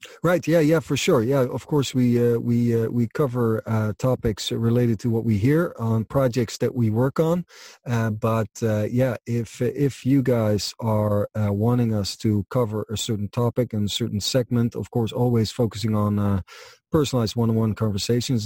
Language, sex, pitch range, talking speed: English, male, 105-120 Hz, 185 wpm